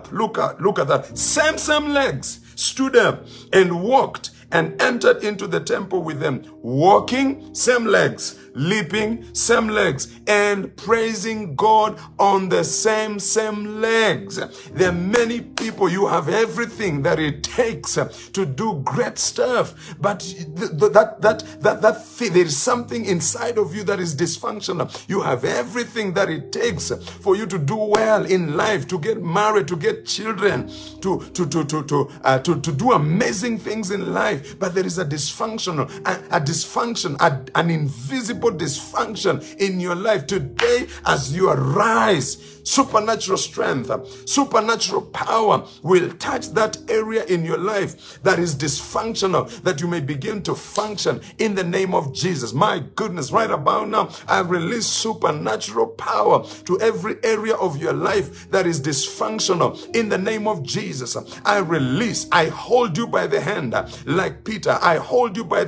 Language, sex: English, male